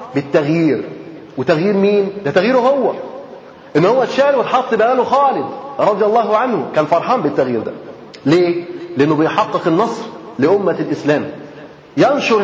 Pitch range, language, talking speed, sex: 165-220 Hz, Arabic, 125 wpm, male